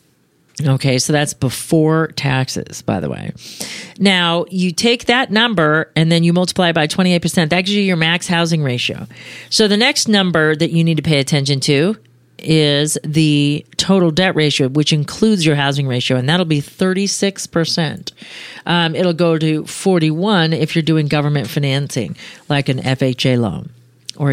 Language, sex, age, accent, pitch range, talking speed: English, female, 40-59, American, 150-195 Hz, 165 wpm